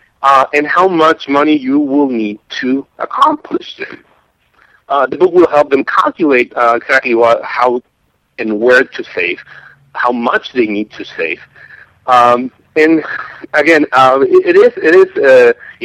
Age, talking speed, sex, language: 50-69, 155 wpm, male, English